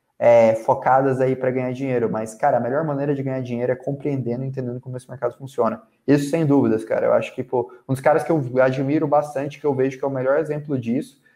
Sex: male